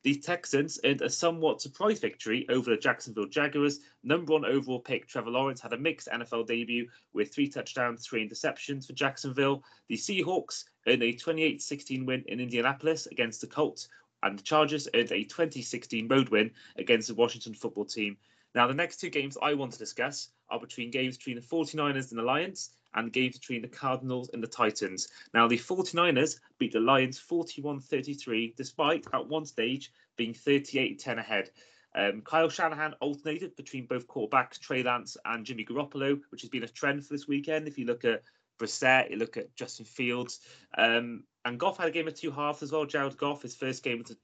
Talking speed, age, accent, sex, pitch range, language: 190 wpm, 30-49, British, male, 120-145 Hz, English